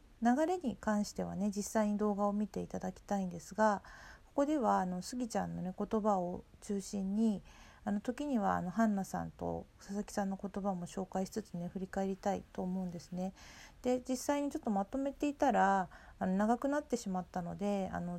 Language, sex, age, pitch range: Japanese, female, 40-59, 180-225 Hz